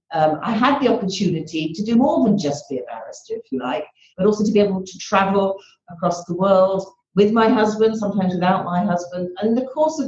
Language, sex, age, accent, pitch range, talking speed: English, female, 50-69, British, 165-215 Hz, 225 wpm